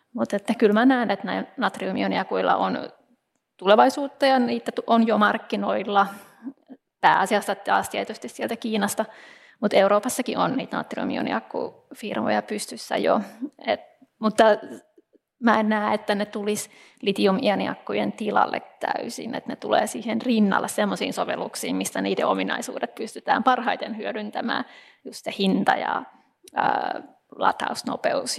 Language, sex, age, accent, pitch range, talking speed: Finnish, female, 20-39, native, 210-275 Hz, 115 wpm